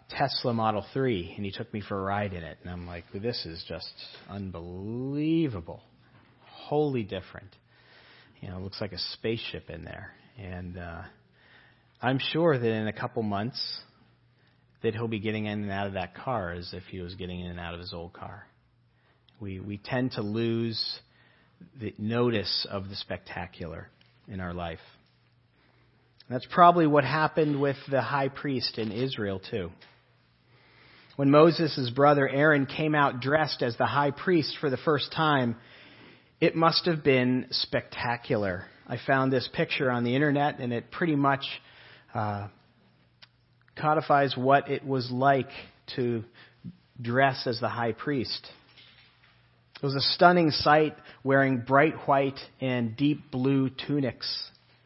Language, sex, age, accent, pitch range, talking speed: English, male, 40-59, American, 105-140 Hz, 155 wpm